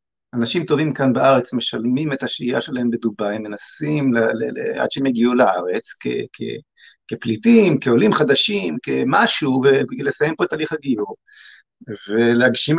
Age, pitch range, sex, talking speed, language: 50-69, 120-155 Hz, male, 135 wpm, Hebrew